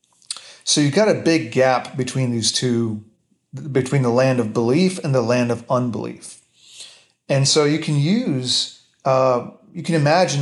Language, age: English, 40-59